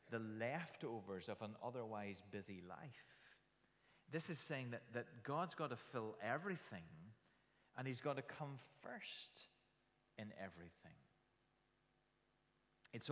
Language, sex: English, male